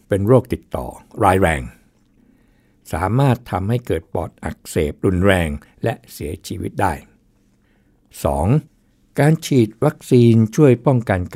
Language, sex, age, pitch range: Thai, male, 60-79, 90-120 Hz